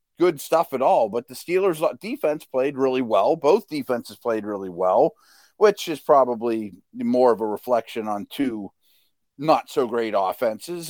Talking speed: 160 wpm